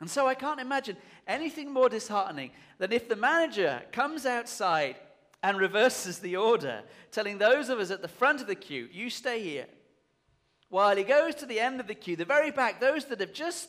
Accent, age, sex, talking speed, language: British, 40-59, male, 205 wpm, English